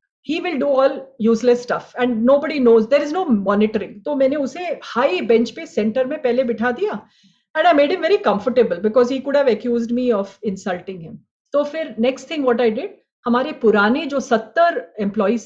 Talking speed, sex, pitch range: 165 wpm, female, 225-300 Hz